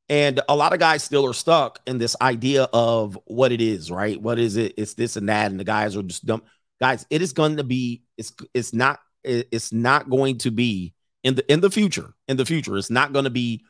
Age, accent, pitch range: 40-59, American, 110-150 Hz